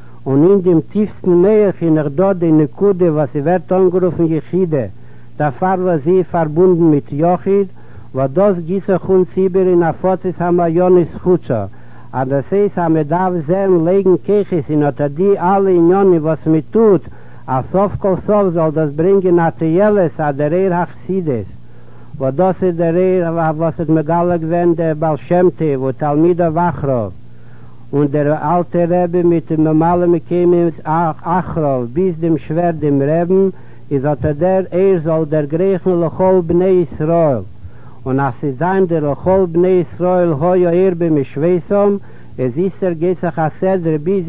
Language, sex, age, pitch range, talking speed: Hebrew, male, 60-79, 155-185 Hz, 125 wpm